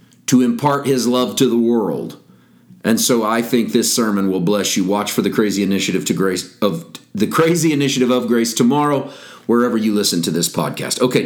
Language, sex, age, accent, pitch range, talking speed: English, male, 40-59, American, 115-135 Hz, 195 wpm